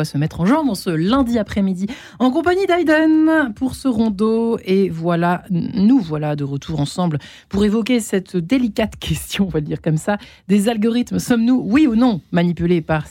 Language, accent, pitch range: French, French, 170-225 Hz